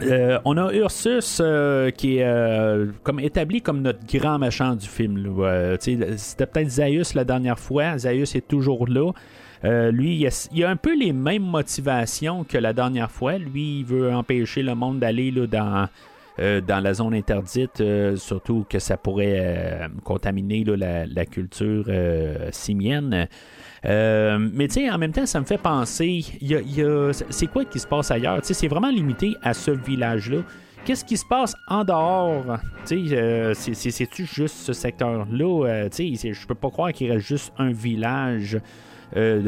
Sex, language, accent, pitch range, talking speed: male, French, Canadian, 105-145 Hz, 180 wpm